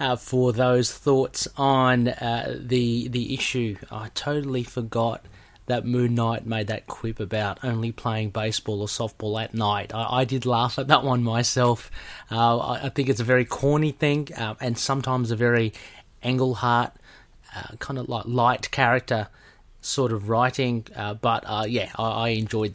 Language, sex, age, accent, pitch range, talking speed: English, male, 30-49, Australian, 110-130 Hz, 170 wpm